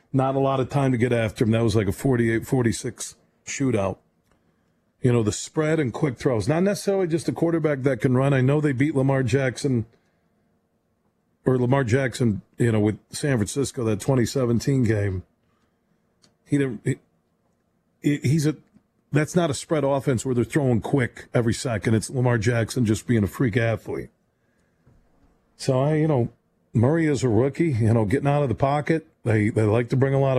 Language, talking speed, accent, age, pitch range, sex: English, 185 wpm, American, 40-59, 115-145 Hz, male